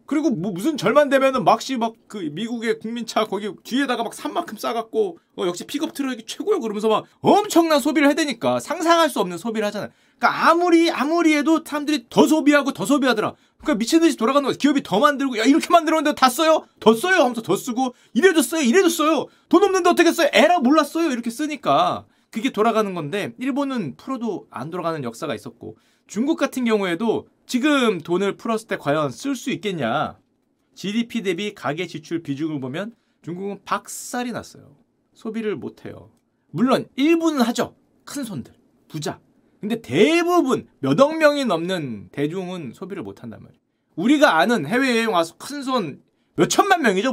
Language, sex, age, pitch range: Korean, male, 30-49, 210-300 Hz